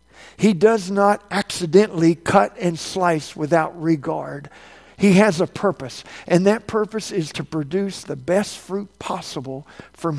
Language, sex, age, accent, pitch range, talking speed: English, male, 50-69, American, 155-195 Hz, 140 wpm